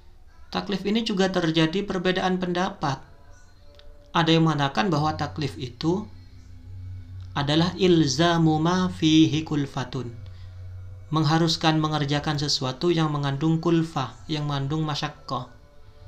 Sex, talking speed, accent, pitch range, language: male, 90 wpm, native, 110-170 Hz, Indonesian